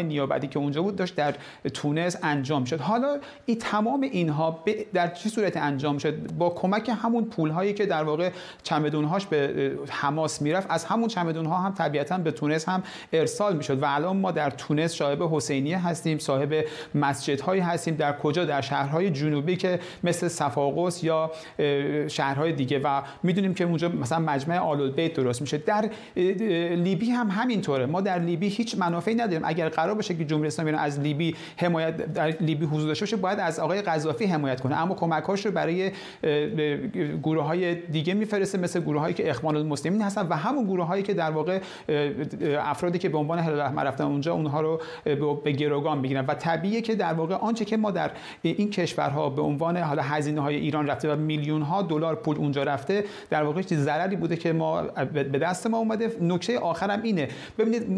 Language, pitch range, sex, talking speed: Persian, 150-185 Hz, male, 175 wpm